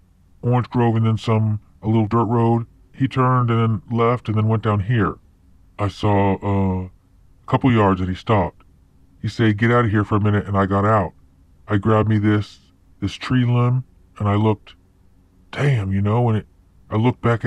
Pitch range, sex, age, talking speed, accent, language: 95-120 Hz, female, 40-59, 205 wpm, American, English